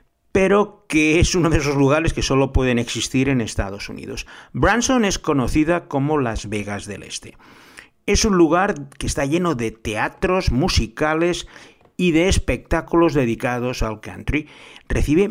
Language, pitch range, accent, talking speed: Spanish, 115-165 Hz, Spanish, 150 wpm